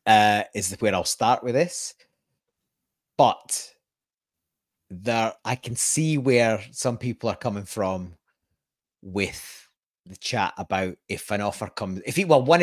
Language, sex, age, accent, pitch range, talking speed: English, male, 30-49, British, 100-135 Hz, 145 wpm